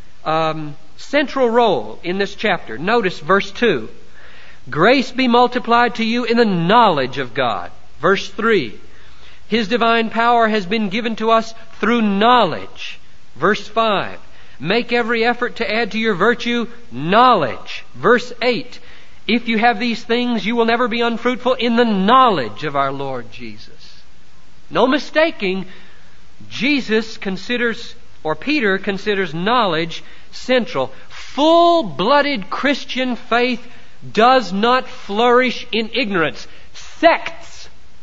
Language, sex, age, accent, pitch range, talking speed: English, male, 50-69, American, 185-245 Hz, 125 wpm